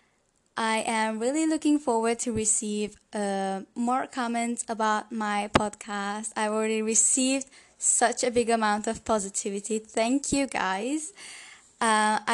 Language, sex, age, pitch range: English, female, 10-29, 205-235 Hz